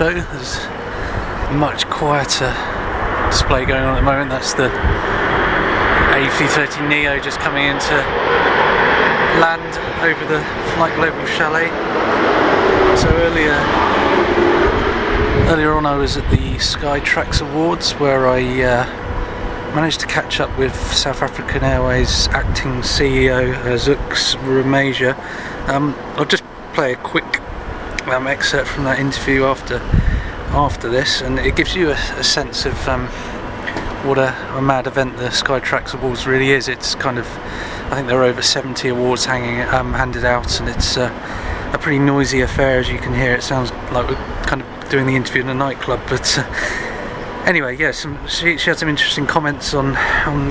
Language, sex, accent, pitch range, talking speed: English, male, British, 125-140 Hz, 155 wpm